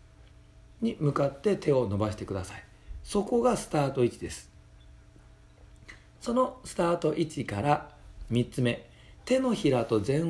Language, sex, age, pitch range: Japanese, male, 40-59, 105-175 Hz